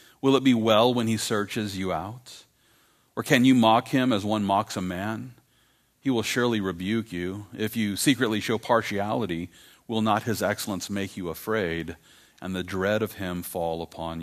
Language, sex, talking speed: English, male, 180 wpm